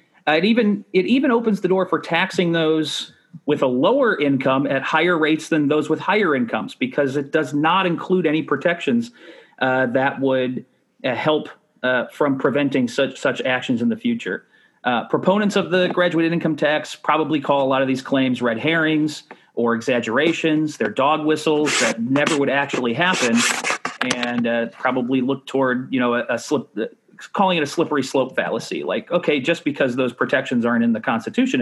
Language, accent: English, American